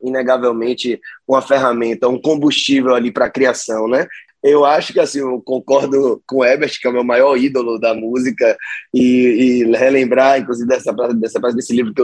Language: Portuguese